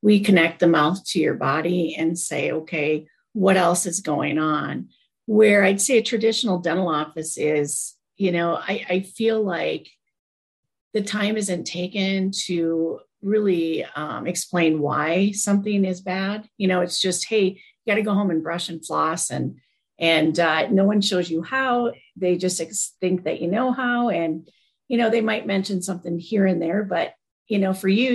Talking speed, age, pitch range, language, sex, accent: 180 wpm, 40-59, 170-220 Hz, English, female, American